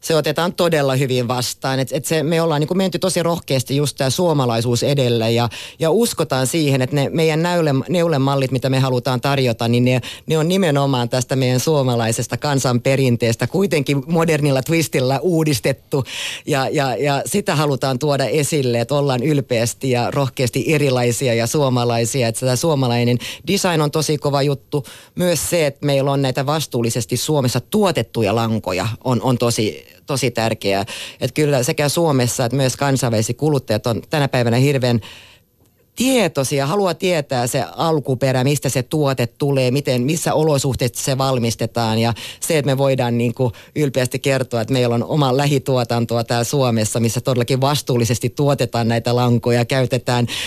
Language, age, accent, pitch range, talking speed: Finnish, 30-49, native, 120-150 Hz, 150 wpm